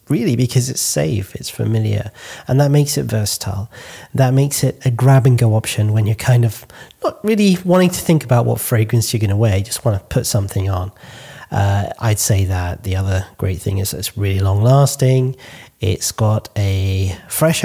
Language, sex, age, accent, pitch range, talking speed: English, male, 30-49, British, 105-130 Hz, 190 wpm